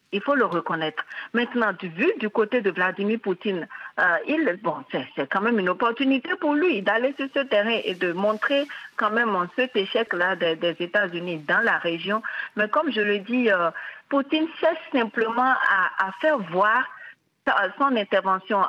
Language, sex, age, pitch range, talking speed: French, female, 50-69, 180-250 Hz, 175 wpm